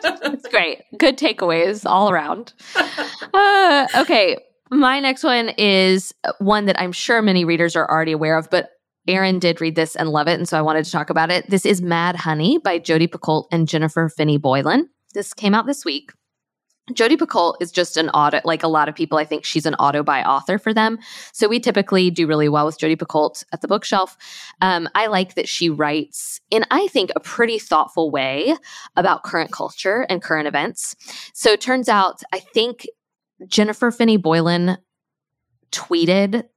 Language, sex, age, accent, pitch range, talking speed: English, female, 10-29, American, 160-230 Hz, 185 wpm